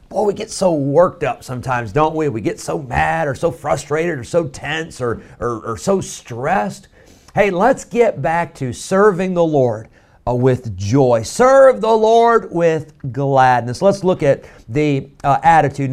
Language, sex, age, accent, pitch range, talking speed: English, male, 40-59, American, 125-170 Hz, 175 wpm